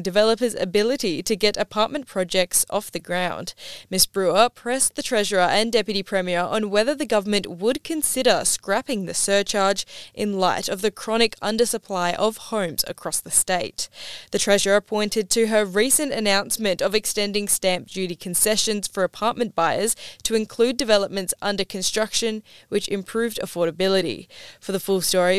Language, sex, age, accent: English, female, 10-29, Australian